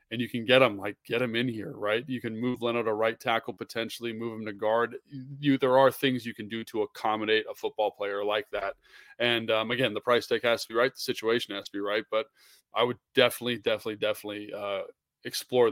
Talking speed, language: 235 wpm, English